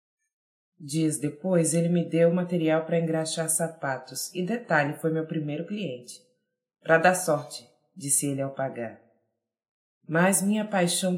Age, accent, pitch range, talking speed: 20-39, Brazilian, 140-175 Hz, 135 wpm